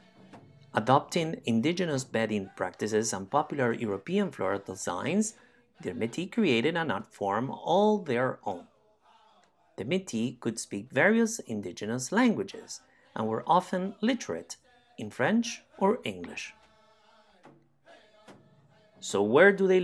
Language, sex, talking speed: English, male, 110 wpm